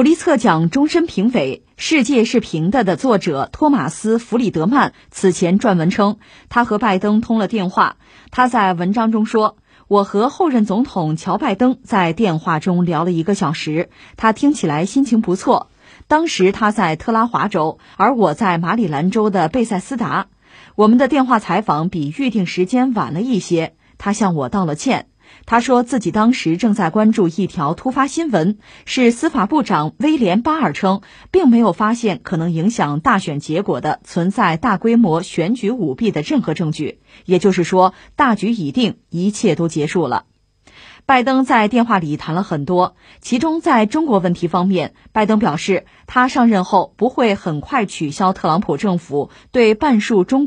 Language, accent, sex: Chinese, native, female